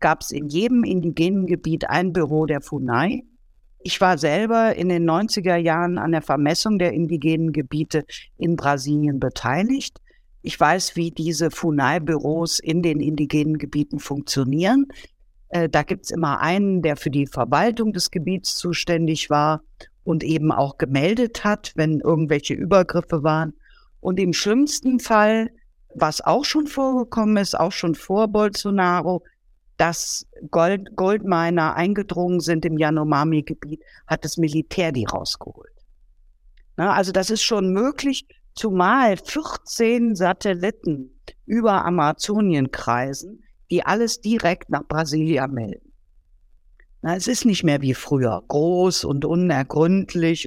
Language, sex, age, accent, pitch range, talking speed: German, female, 50-69, German, 155-200 Hz, 130 wpm